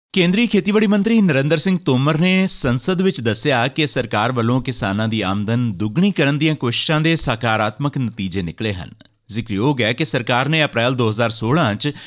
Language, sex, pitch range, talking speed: Punjabi, male, 105-155 Hz, 160 wpm